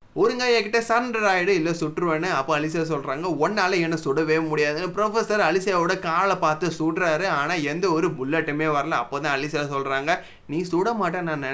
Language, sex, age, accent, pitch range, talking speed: Tamil, male, 20-39, native, 150-180 Hz, 145 wpm